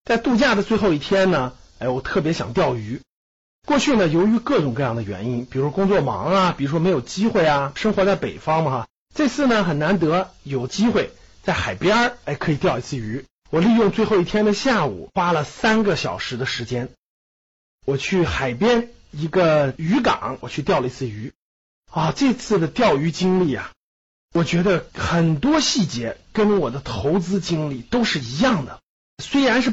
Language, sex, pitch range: Chinese, male, 135-220 Hz